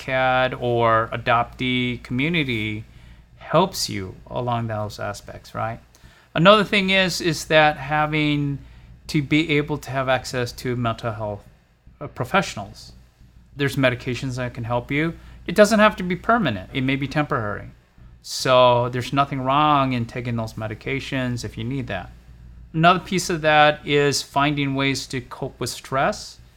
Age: 30-49